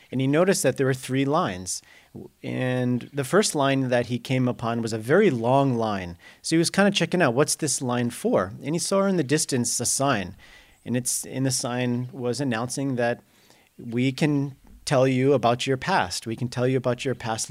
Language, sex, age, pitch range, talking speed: English, male, 40-59, 120-155 Hz, 215 wpm